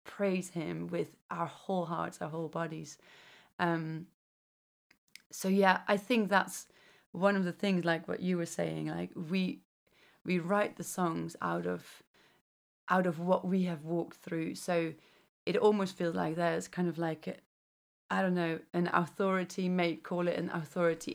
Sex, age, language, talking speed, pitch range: female, 30-49, English, 165 wpm, 160-185 Hz